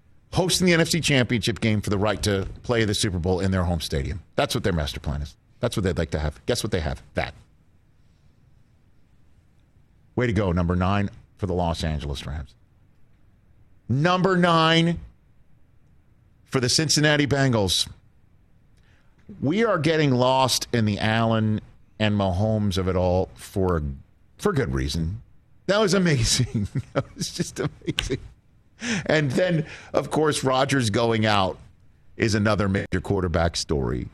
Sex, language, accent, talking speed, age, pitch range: male, English, American, 150 wpm, 50-69, 90-120 Hz